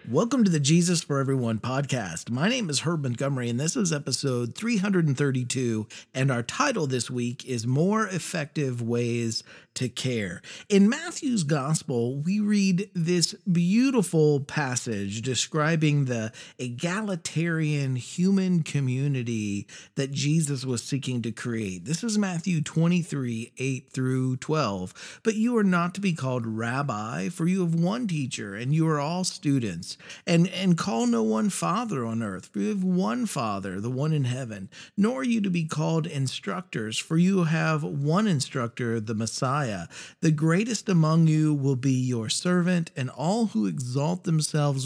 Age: 40-59